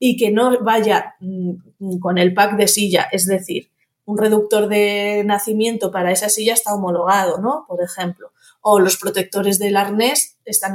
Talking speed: 160 wpm